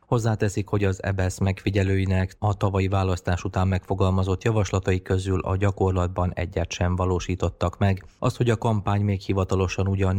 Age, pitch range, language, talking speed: 30-49, 90-100 Hz, Hungarian, 145 wpm